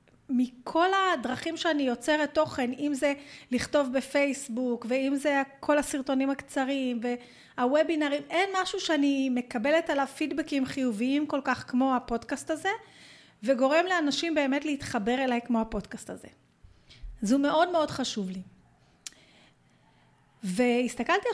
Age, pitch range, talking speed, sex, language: 30-49, 235-320 Hz, 115 wpm, female, Hebrew